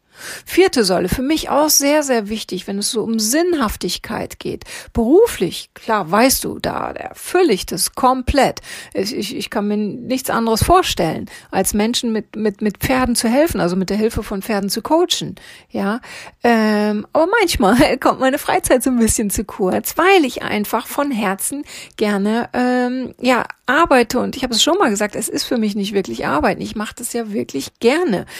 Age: 40-59